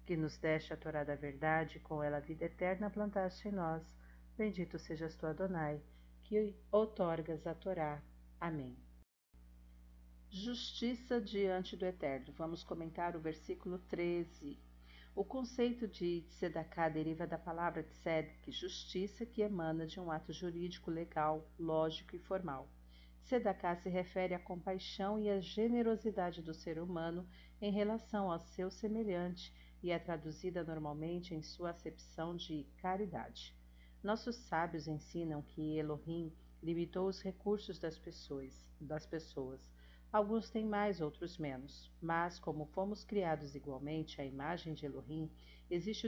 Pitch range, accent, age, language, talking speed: 150-190 Hz, Brazilian, 50-69, Portuguese, 135 wpm